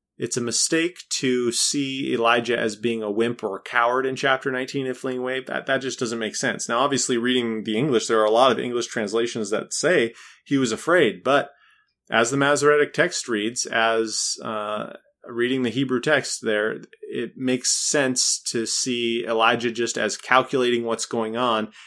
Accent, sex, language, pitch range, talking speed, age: American, male, English, 105-125 Hz, 185 wpm, 30-49